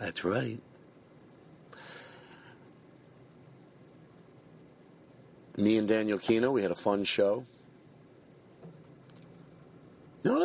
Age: 40-59